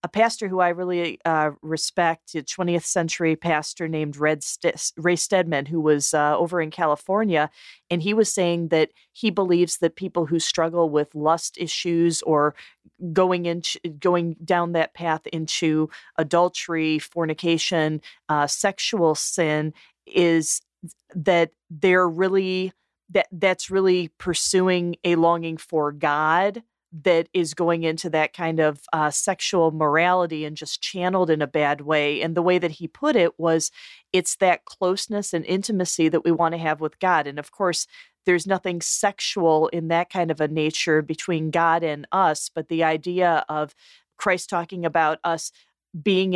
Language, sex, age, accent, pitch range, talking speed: English, female, 30-49, American, 155-180 Hz, 160 wpm